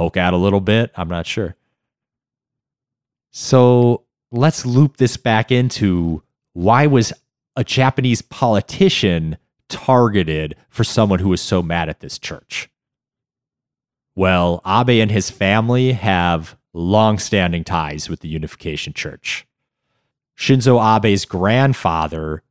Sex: male